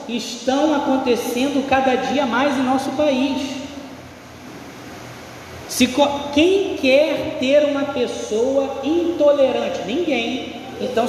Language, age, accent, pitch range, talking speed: Portuguese, 20-39, Brazilian, 225-280 Hz, 85 wpm